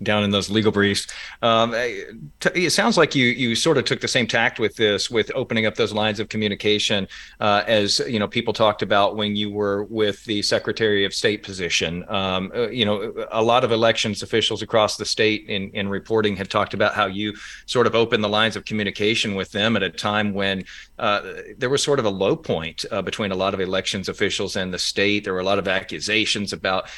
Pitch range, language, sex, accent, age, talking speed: 100-115 Hz, English, male, American, 40-59, 220 wpm